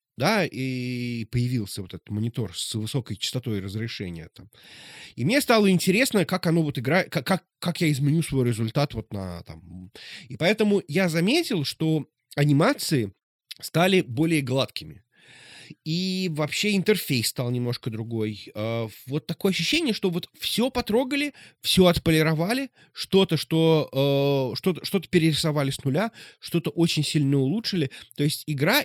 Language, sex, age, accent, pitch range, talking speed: Russian, male, 20-39, native, 125-180 Hz, 140 wpm